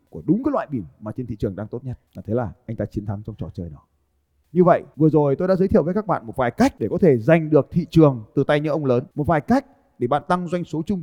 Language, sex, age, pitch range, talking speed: Vietnamese, male, 20-39, 130-175 Hz, 315 wpm